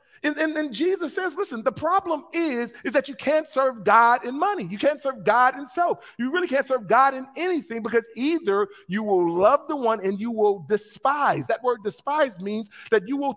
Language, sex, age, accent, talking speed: English, male, 40-59, American, 215 wpm